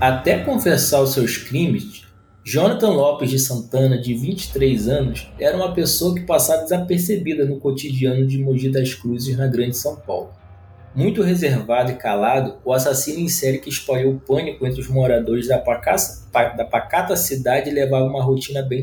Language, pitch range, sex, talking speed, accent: Portuguese, 120-160 Hz, male, 165 wpm, Brazilian